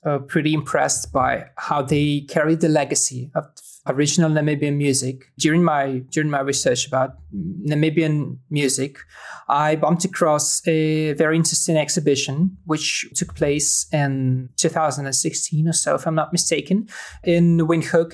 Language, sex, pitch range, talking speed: English, male, 155-180 Hz, 135 wpm